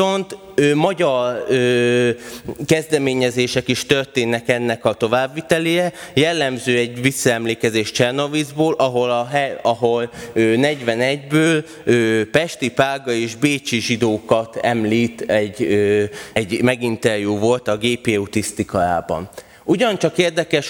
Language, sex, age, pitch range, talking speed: Hungarian, male, 20-39, 115-145 Hz, 80 wpm